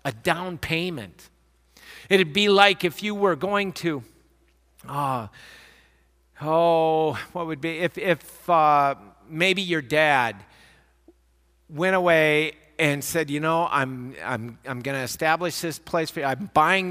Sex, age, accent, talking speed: male, 50-69, American, 140 wpm